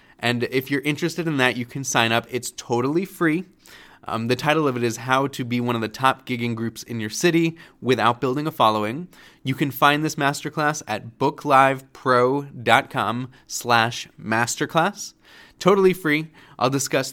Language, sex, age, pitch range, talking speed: English, male, 20-39, 115-150 Hz, 170 wpm